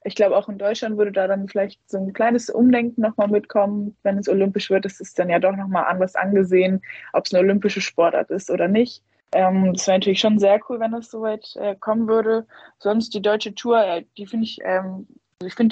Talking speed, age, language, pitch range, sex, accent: 220 wpm, 20-39, German, 180-210 Hz, female, German